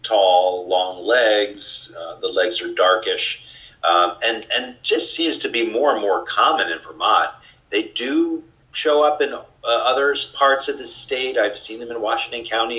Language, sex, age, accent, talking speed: English, male, 40-59, American, 180 wpm